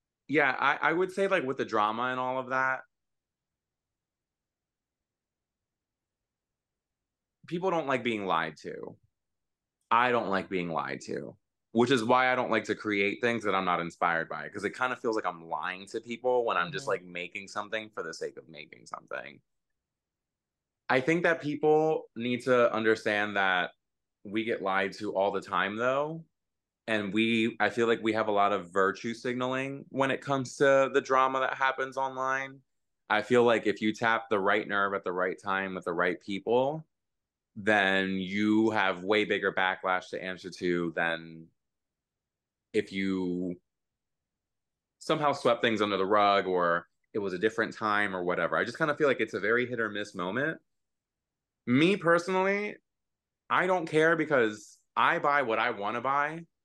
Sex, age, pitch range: male, 20-39, 95-130 Hz